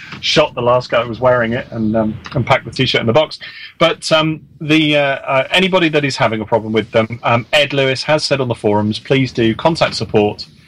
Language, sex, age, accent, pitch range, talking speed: English, male, 30-49, British, 110-140 Hz, 235 wpm